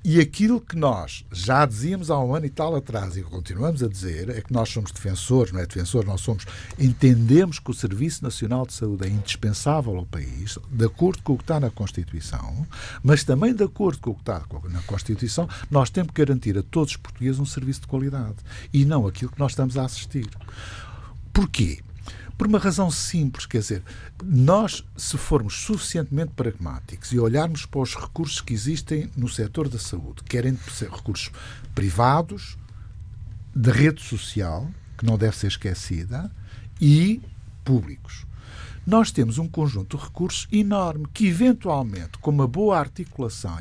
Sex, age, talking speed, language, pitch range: male, 60-79, 170 wpm, Portuguese, 100-150 Hz